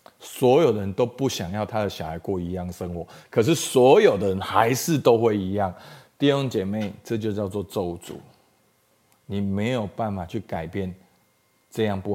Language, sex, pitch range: Chinese, male, 100-130 Hz